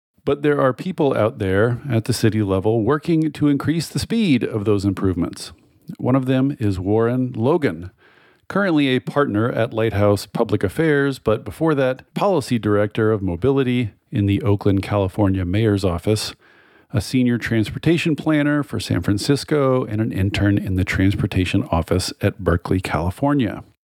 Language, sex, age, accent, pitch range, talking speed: English, male, 40-59, American, 100-140 Hz, 155 wpm